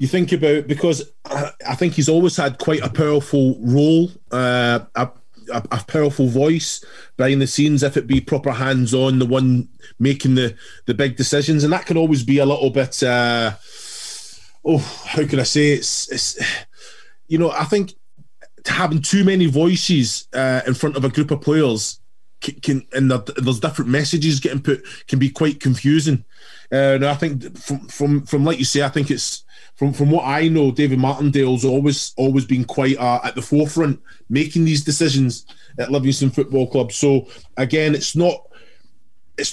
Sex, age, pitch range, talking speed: male, 20-39, 130-155 Hz, 180 wpm